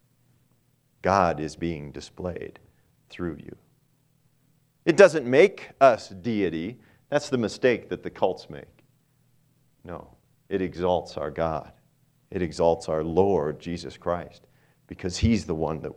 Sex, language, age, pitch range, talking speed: male, English, 40-59, 95-130 Hz, 130 wpm